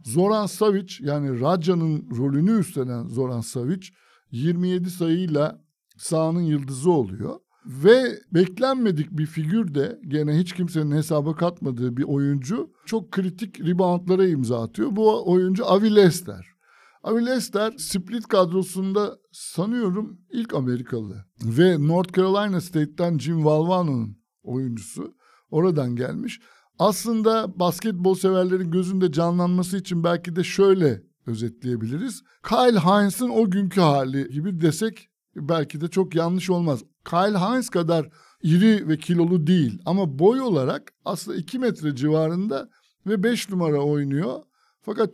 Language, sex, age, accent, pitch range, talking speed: Turkish, male, 60-79, native, 150-195 Hz, 120 wpm